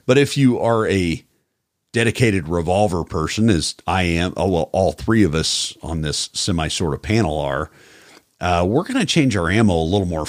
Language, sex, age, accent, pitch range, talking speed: English, male, 40-59, American, 85-110 Hz, 185 wpm